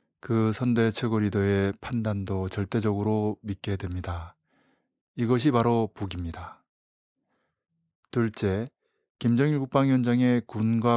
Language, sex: Korean, male